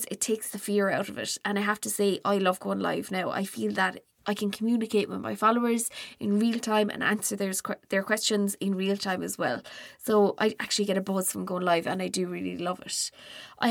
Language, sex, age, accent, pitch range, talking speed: English, female, 20-39, Irish, 195-235 Hz, 240 wpm